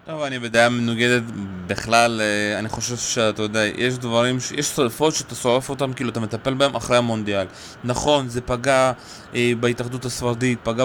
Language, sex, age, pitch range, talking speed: Hebrew, male, 20-39, 120-145 Hz, 160 wpm